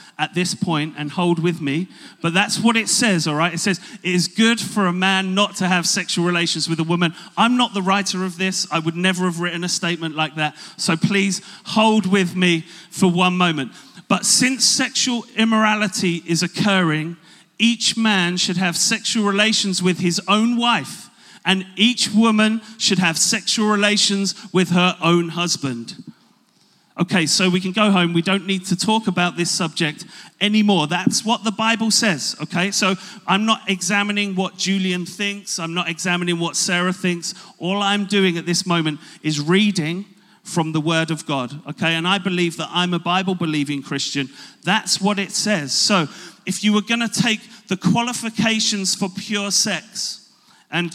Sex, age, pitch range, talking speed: male, 40-59, 175-210 Hz, 180 wpm